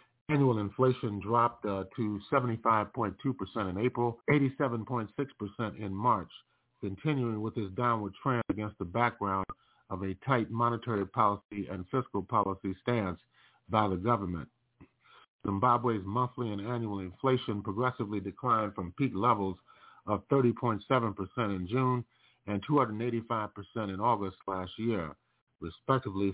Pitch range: 95-120 Hz